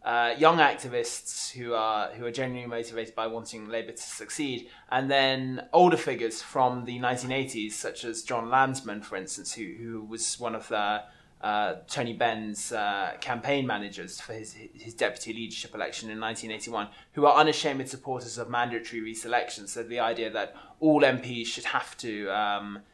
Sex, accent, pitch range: male, British, 115-135 Hz